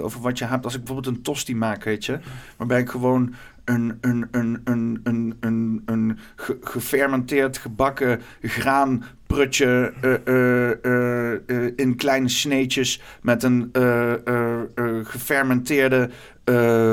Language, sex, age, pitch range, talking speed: Dutch, male, 40-59, 125-145 Hz, 140 wpm